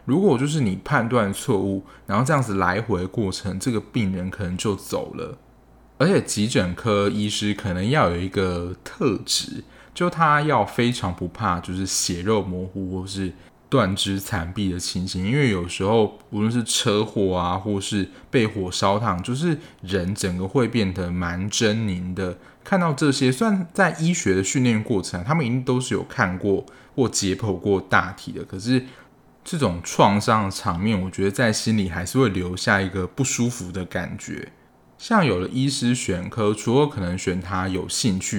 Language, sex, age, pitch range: Chinese, male, 20-39, 95-120 Hz